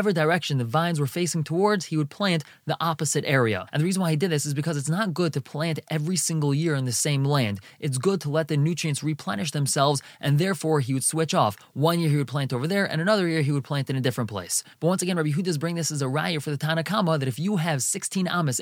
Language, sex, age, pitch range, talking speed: English, male, 20-39, 145-180 Hz, 270 wpm